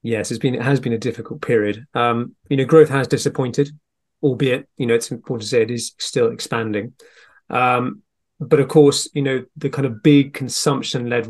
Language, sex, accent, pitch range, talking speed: English, male, British, 115-140 Hz, 195 wpm